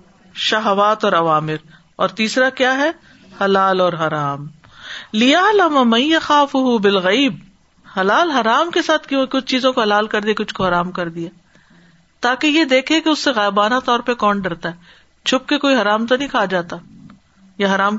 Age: 50-69